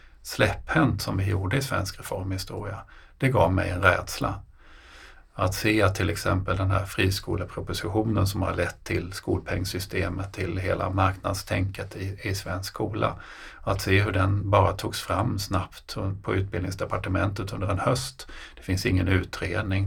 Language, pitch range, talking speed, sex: Swedish, 90-100 Hz, 150 wpm, male